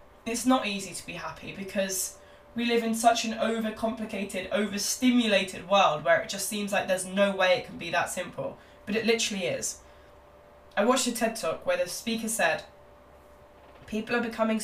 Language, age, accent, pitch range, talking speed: English, 10-29, British, 165-220 Hz, 180 wpm